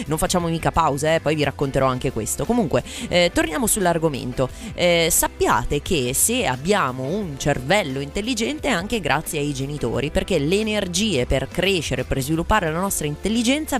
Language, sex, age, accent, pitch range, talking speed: Italian, female, 20-39, native, 140-210 Hz, 165 wpm